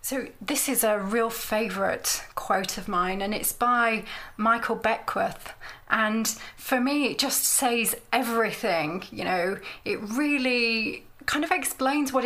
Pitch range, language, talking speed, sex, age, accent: 215-255 Hz, English, 140 wpm, female, 30-49, British